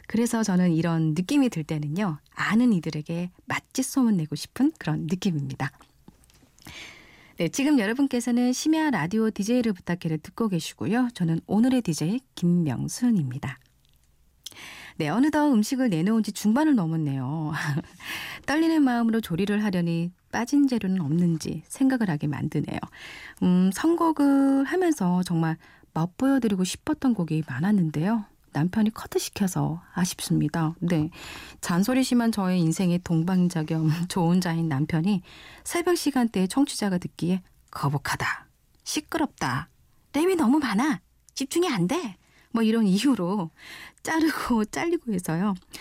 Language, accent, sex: Korean, native, female